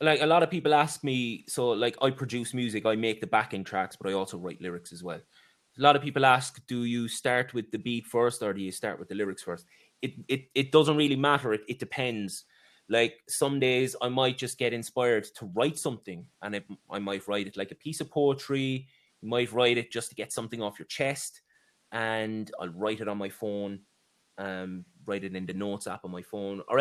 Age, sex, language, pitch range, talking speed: 20-39, male, English, 100-135 Hz, 235 wpm